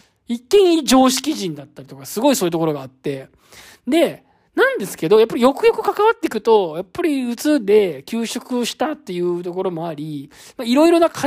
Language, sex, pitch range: Japanese, male, 160-260 Hz